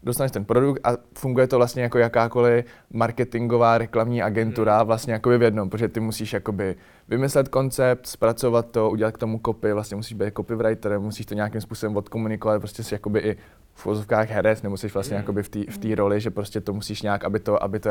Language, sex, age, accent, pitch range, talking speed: Czech, male, 20-39, native, 110-125 Hz, 200 wpm